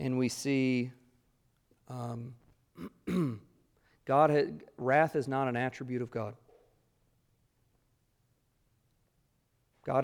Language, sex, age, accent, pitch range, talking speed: English, male, 40-59, American, 115-130 Hz, 85 wpm